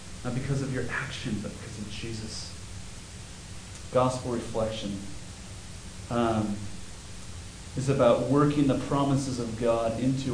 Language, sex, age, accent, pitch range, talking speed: English, male, 30-49, American, 100-135 Hz, 115 wpm